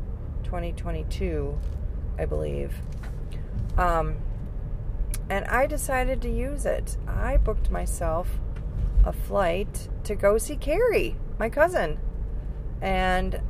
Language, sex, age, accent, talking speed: English, female, 30-49, American, 100 wpm